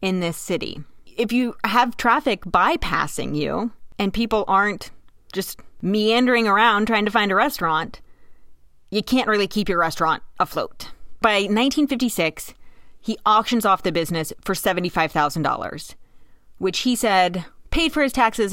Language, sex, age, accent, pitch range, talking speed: English, female, 30-49, American, 170-225 Hz, 140 wpm